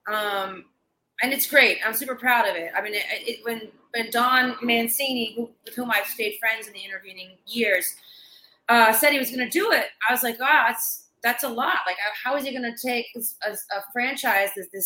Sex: female